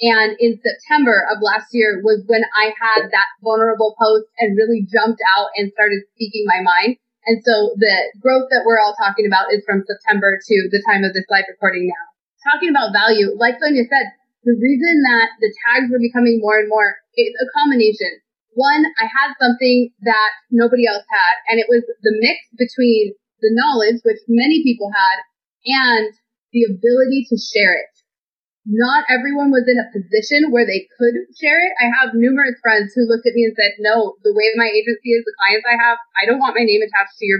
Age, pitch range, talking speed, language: 30-49, 215-250 Hz, 200 wpm, English